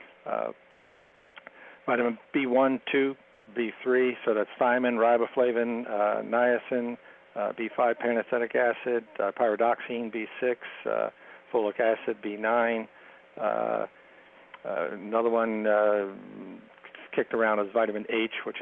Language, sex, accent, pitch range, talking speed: English, male, American, 105-120 Hz, 105 wpm